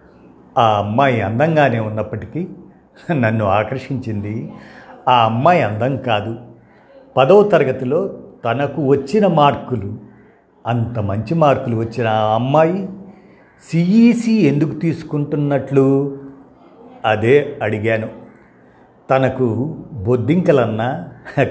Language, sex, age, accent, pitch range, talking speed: Telugu, male, 50-69, native, 110-150 Hz, 80 wpm